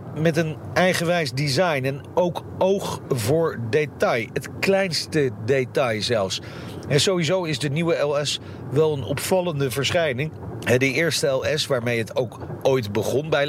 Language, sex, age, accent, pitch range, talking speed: Dutch, male, 40-59, Dutch, 125-170 Hz, 140 wpm